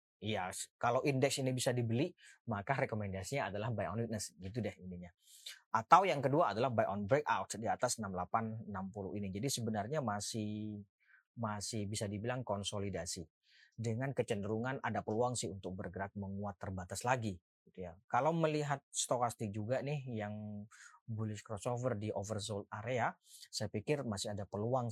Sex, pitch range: male, 100-130 Hz